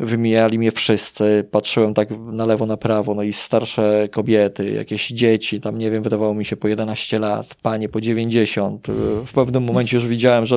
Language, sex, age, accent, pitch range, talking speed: Polish, male, 20-39, native, 110-130 Hz, 185 wpm